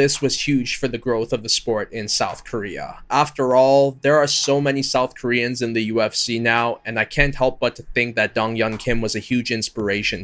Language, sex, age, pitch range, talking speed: English, male, 20-39, 115-135 Hz, 230 wpm